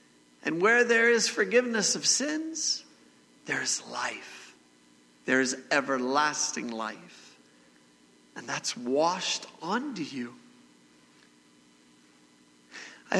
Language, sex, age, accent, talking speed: English, male, 50-69, American, 90 wpm